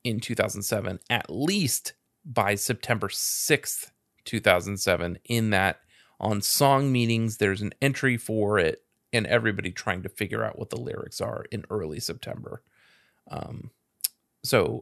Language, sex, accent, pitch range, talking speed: English, male, American, 105-120 Hz, 135 wpm